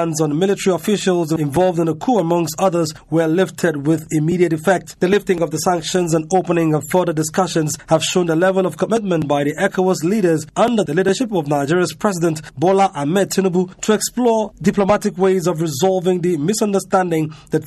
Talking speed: 175 wpm